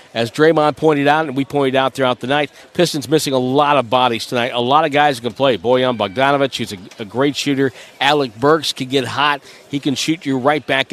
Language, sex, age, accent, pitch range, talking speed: English, male, 50-69, American, 125-155 Hz, 230 wpm